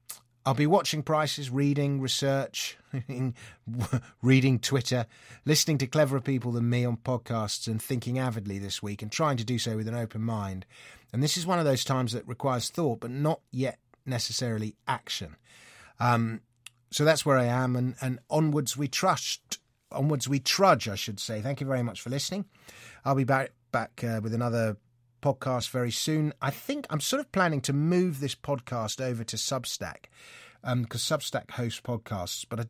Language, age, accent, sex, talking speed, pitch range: English, 30-49, British, male, 180 wpm, 110-135 Hz